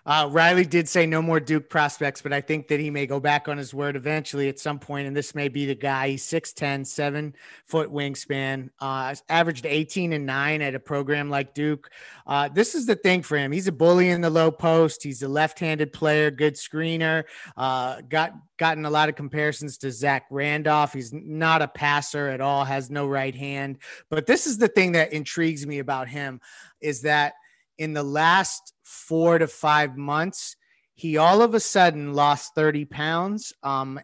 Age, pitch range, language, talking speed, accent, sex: 30-49, 140-160 Hz, English, 200 wpm, American, male